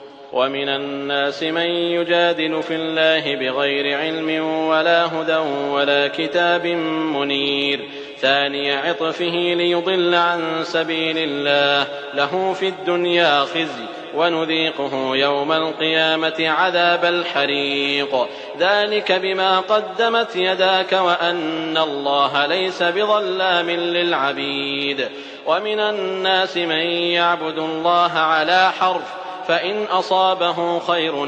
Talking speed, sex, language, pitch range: 90 wpm, male, English, 160-190 Hz